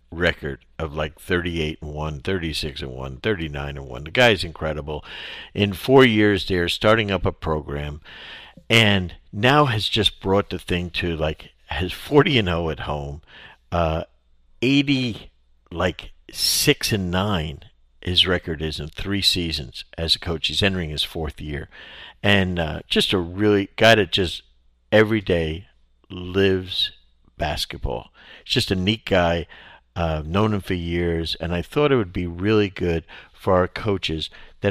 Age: 50-69